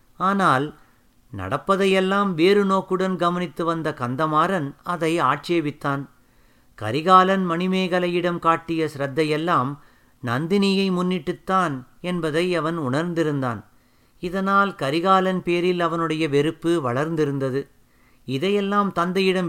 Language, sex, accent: Tamil, male, native